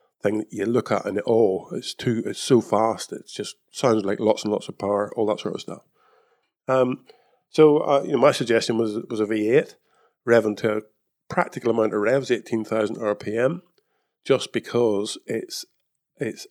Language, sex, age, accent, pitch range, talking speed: English, male, 50-69, British, 115-150 Hz, 190 wpm